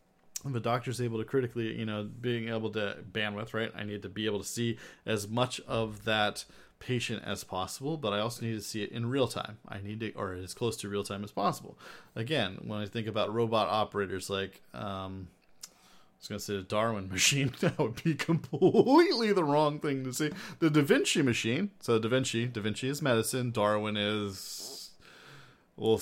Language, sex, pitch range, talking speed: English, male, 100-125 Hz, 205 wpm